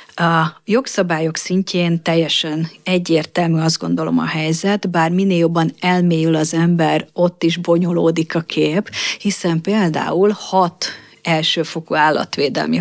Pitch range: 160-195 Hz